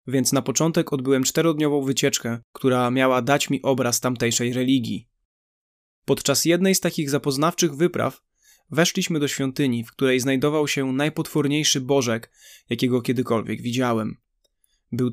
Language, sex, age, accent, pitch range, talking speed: Polish, male, 20-39, native, 125-145 Hz, 125 wpm